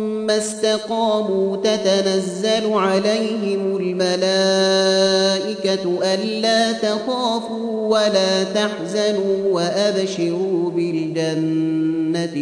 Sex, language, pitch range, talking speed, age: male, Gujarati, 170-215 Hz, 55 wpm, 30-49